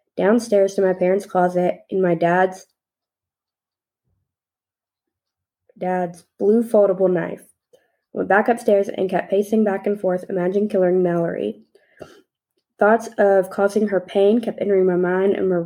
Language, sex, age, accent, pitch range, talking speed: English, female, 20-39, American, 180-200 Hz, 135 wpm